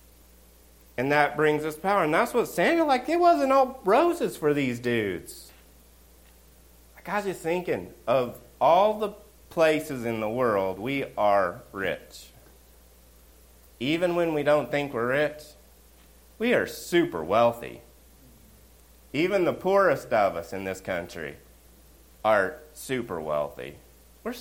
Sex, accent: male, American